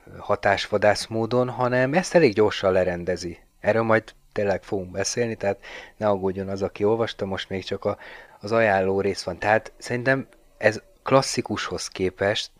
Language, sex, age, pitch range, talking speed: Hungarian, male, 30-49, 95-120 Hz, 150 wpm